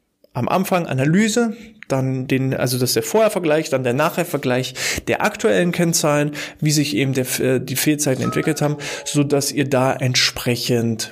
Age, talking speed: 20-39, 150 wpm